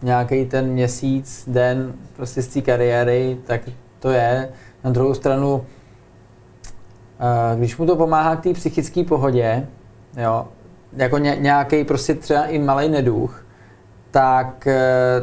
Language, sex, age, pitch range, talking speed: Czech, male, 20-39, 120-140 Hz, 120 wpm